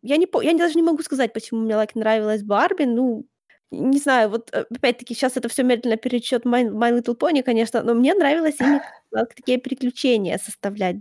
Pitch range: 225-265 Hz